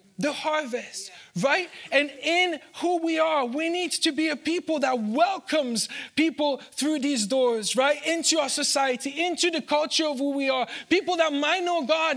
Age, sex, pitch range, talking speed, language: 20-39, male, 270-320 Hz, 180 wpm, English